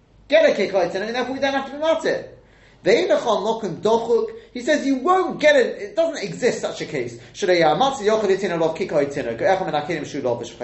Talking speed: 145 wpm